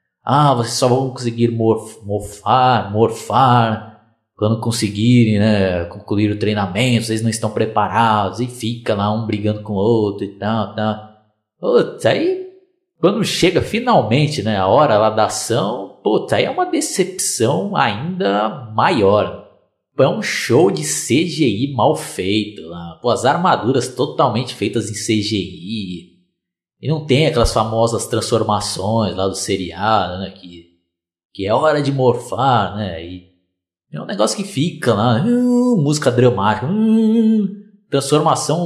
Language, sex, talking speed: Portuguese, male, 145 wpm